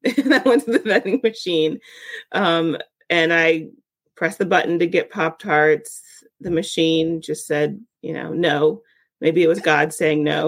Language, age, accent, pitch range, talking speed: English, 30-49, American, 165-225 Hz, 165 wpm